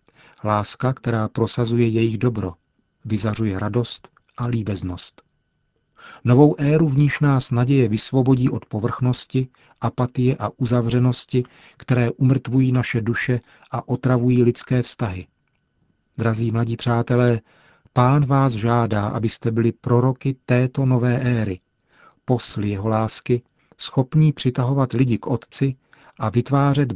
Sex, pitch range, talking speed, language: male, 115-130 Hz, 115 wpm, Czech